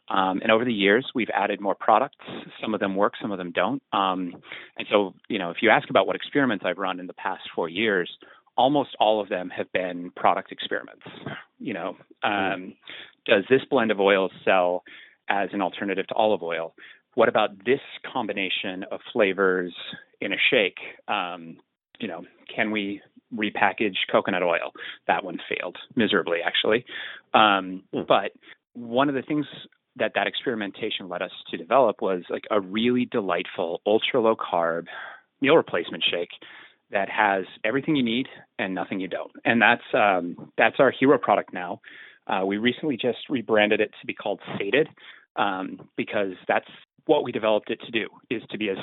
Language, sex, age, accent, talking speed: English, male, 30-49, American, 175 wpm